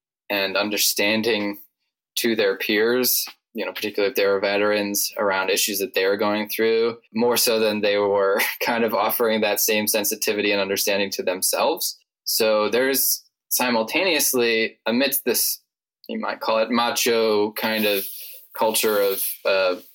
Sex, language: male, English